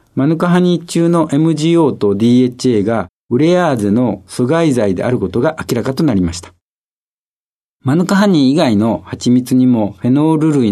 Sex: male